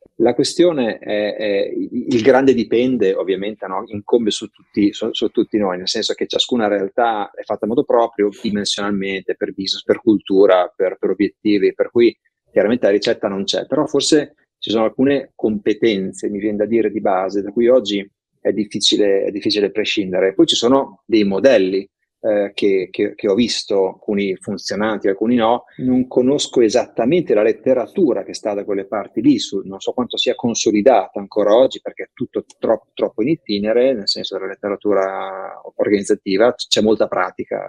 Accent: native